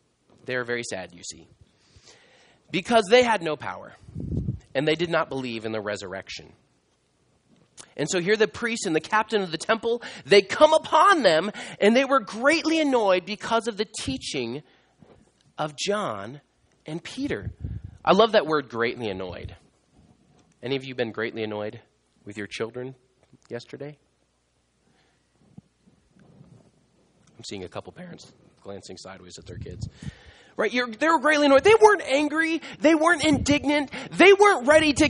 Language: English